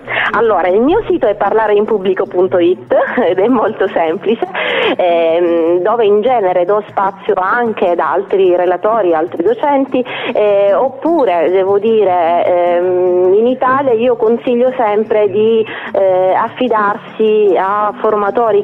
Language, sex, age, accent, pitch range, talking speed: Italian, female, 30-49, native, 185-245 Hz, 120 wpm